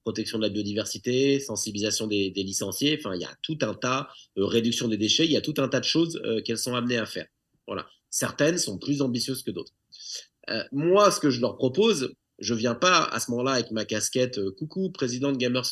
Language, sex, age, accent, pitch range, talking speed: French, male, 30-49, French, 115-145 Hz, 235 wpm